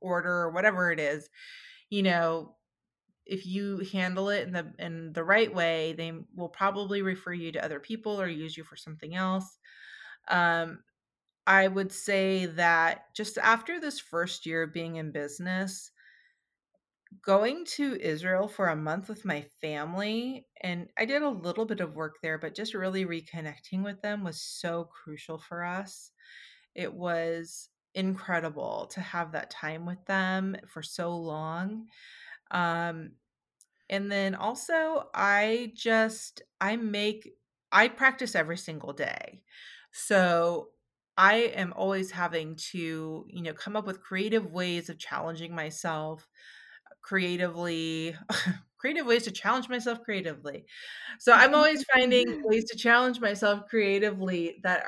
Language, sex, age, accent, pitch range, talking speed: English, female, 30-49, American, 165-205 Hz, 145 wpm